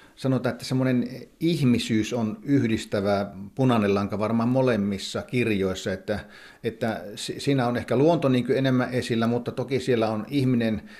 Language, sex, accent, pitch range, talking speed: Finnish, male, native, 105-120 Hz, 130 wpm